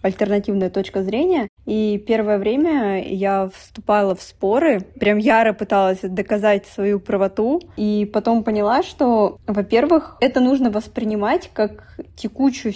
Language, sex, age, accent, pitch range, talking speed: Russian, female, 20-39, native, 200-240 Hz, 120 wpm